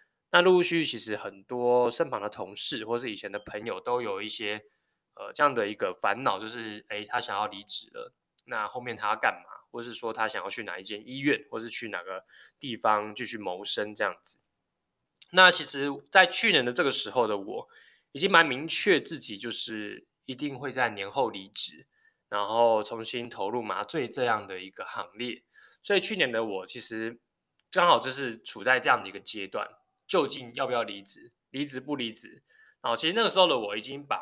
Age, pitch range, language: 20-39, 110-180 Hz, Chinese